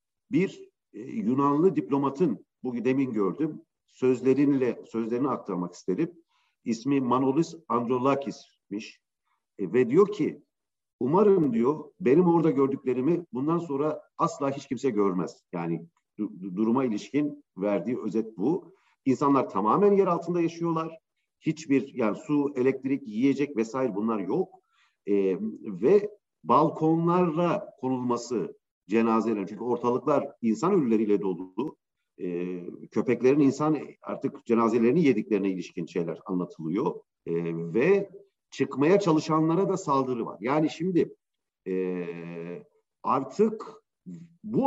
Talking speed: 110 wpm